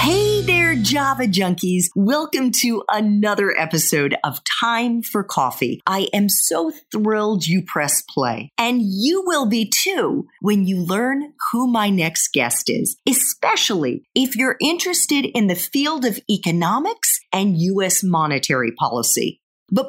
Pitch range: 160-250 Hz